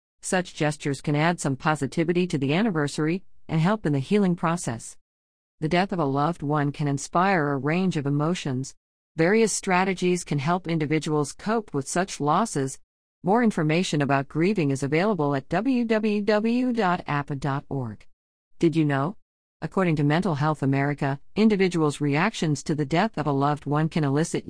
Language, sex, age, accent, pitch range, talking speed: English, female, 50-69, American, 140-180 Hz, 155 wpm